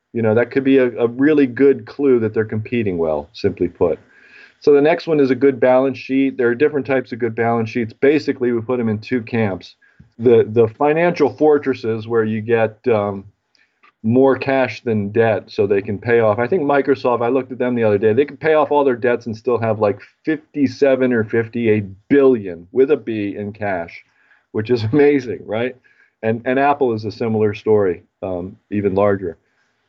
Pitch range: 105-135 Hz